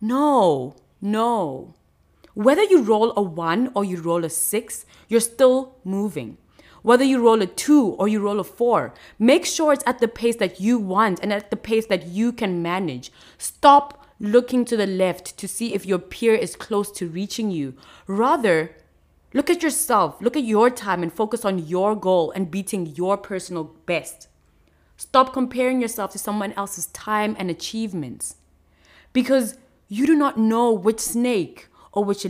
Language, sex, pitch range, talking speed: English, female, 185-245 Hz, 175 wpm